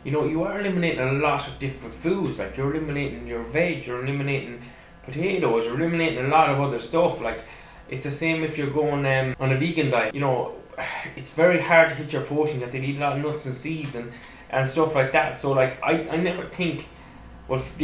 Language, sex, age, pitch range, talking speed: English, male, 10-29, 125-150 Hz, 225 wpm